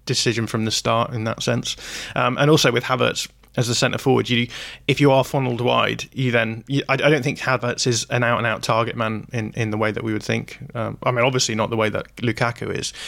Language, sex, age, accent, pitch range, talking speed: English, male, 20-39, British, 110-130 Hz, 250 wpm